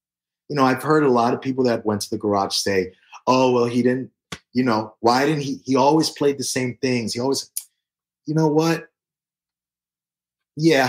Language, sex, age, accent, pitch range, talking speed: English, male, 30-49, American, 95-125 Hz, 195 wpm